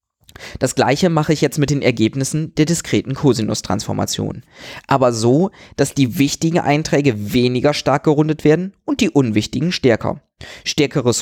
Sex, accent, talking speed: male, German, 140 wpm